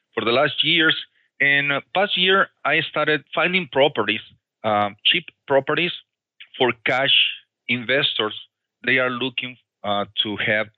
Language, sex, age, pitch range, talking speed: English, male, 40-59, 115-150 Hz, 130 wpm